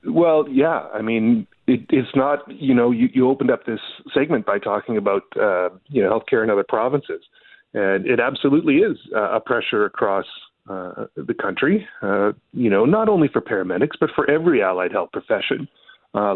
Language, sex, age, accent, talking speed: English, male, 40-59, American, 180 wpm